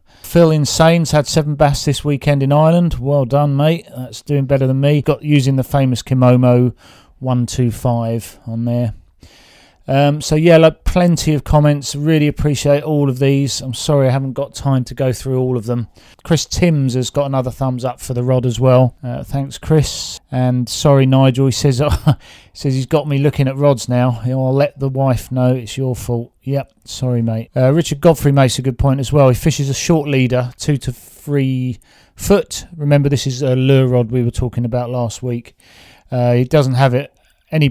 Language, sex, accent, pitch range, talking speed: English, male, British, 120-140 Hz, 200 wpm